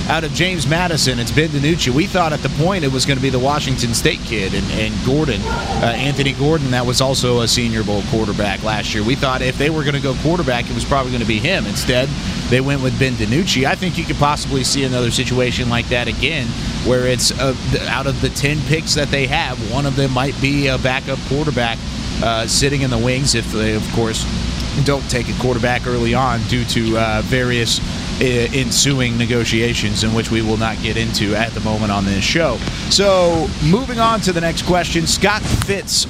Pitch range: 125-150 Hz